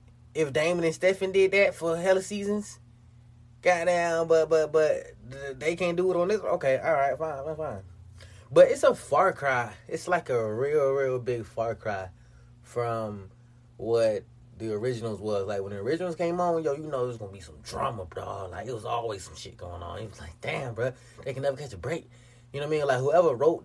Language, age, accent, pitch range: English, 20-39, American, 120-155 Hz